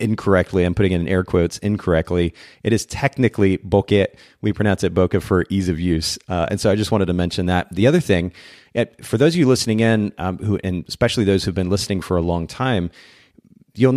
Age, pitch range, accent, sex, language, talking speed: 30-49, 95-110 Hz, American, male, English, 220 wpm